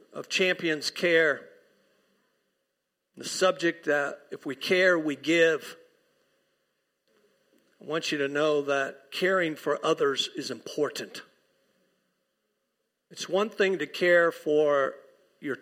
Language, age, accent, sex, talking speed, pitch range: English, 50-69, American, male, 110 wpm, 150-185 Hz